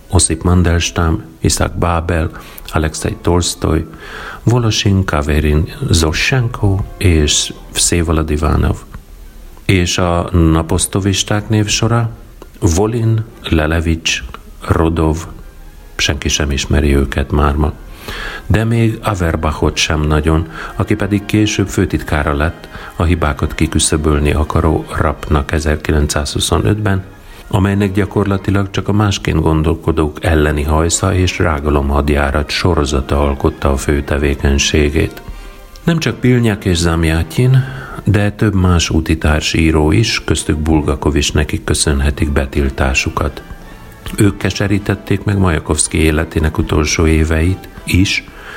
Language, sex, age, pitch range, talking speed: Hungarian, male, 40-59, 75-100 Hz, 100 wpm